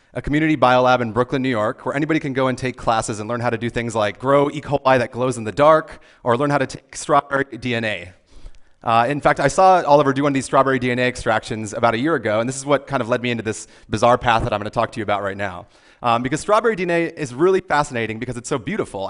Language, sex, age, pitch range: Chinese, male, 30-49, 115-145 Hz